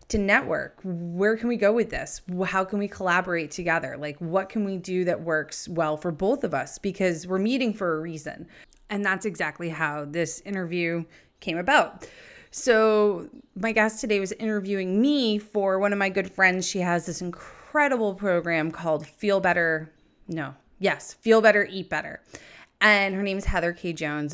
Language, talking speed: English, 180 wpm